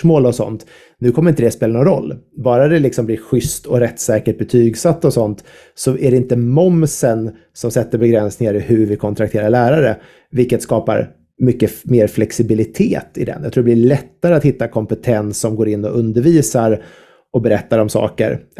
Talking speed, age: 180 wpm, 30-49